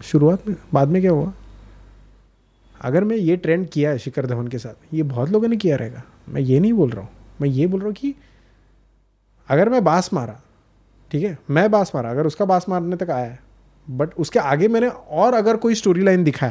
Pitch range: 120-190 Hz